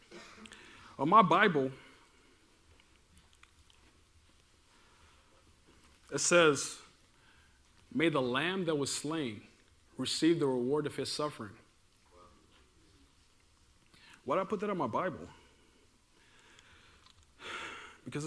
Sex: male